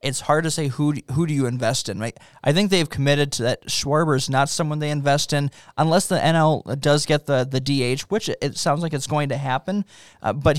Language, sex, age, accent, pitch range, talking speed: English, male, 20-39, American, 135-155 Hz, 230 wpm